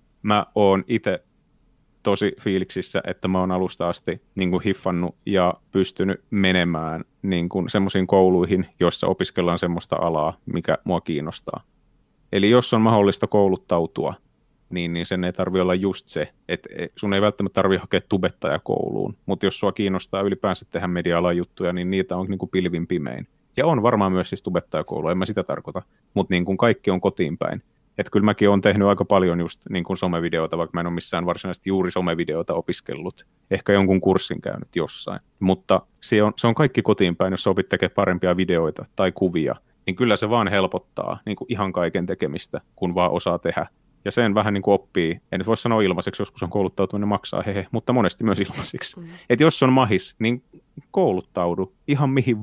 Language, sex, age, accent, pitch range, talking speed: Finnish, male, 30-49, native, 90-105 Hz, 180 wpm